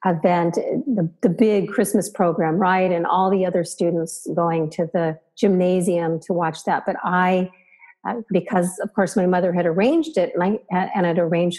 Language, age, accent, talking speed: English, 50-69, American, 175 wpm